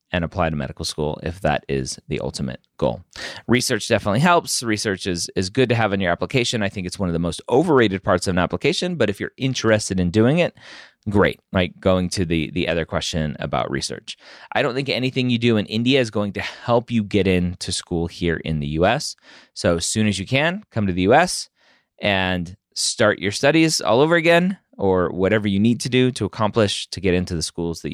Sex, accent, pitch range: male, American, 90-125 Hz